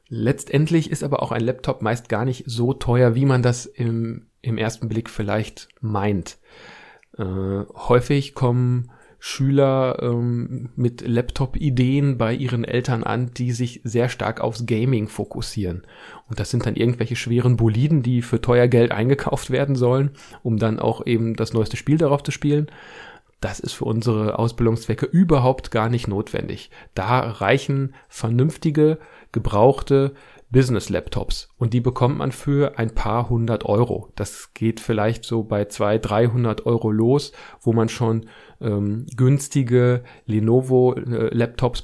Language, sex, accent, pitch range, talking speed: German, male, German, 110-130 Hz, 145 wpm